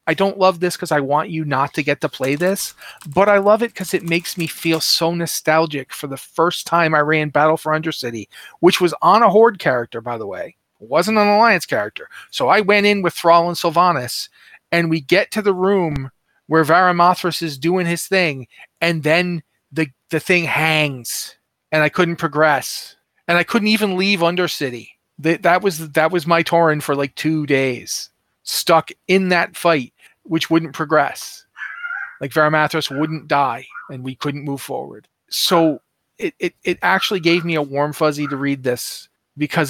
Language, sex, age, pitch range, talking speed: English, male, 40-59, 135-170 Hz, 190 wpm